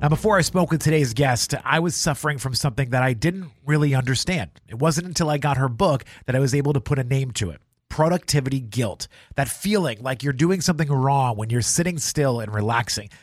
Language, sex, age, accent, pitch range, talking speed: English, male, 30-49, American, 125-160 Hz, 220 wpm